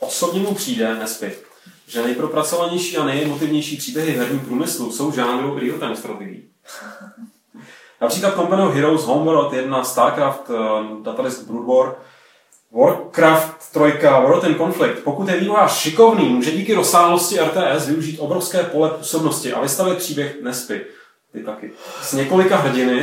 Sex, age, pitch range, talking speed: male, 30-49, 130-175 Hz, 130 wpm